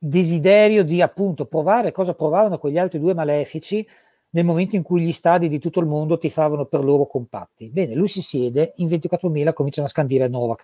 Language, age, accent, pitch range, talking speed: Italian, 40-59, native, 145-210 Hz, 195 wpm